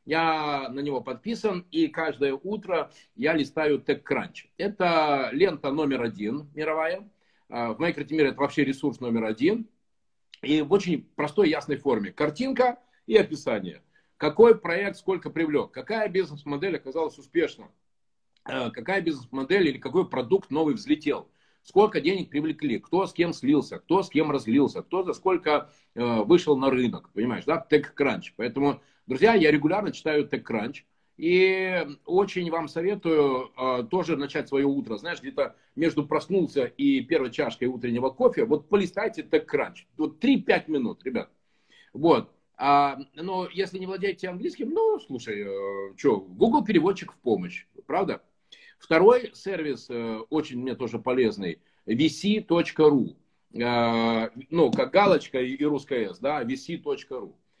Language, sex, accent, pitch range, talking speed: Russian, male, native, 140-200 Hz, 130 wpm